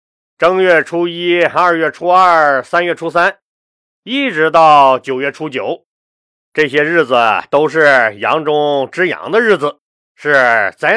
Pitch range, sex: 140-210 Hz, male